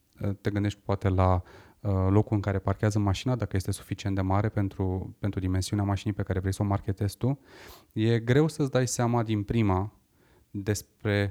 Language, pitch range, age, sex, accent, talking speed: Romanian, 100-115 Hz, 20-39, male, native, 180 wpm